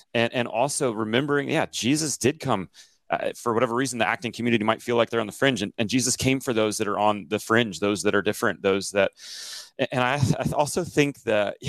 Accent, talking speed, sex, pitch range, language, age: American, 230 wpm, male, 110-140 Hz, English, 30-49